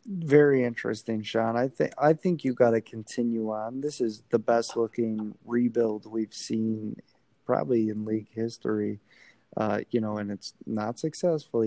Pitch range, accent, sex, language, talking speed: 110-130 Hz, American, male, English, 160 wpm